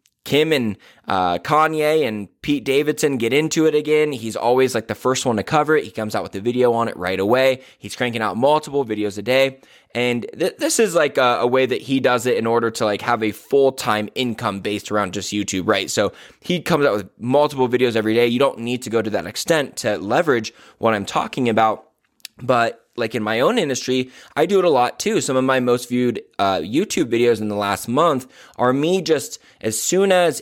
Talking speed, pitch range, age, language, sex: 225 wpm, 110-150 Hz, 20-39, English, male